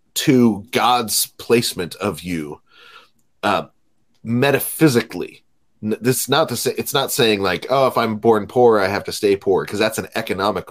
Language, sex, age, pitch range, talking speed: English, male, 30-49, 90-115 Hz, 165 wpm